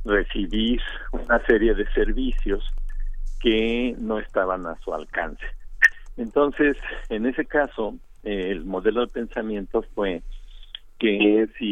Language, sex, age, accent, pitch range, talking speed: Spanish, male, 50-69, Mexican, 95-130 Hz, 115 wpm